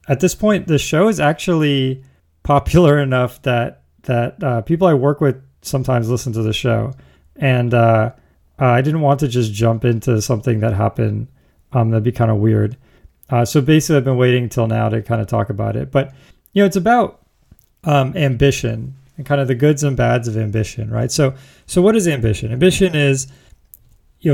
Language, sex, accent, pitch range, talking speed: English, male, American, 115-140 Hz, 190 wpm